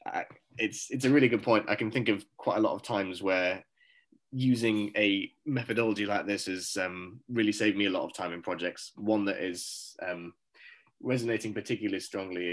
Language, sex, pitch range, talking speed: English, male, 95-115 Hz, 190 wpm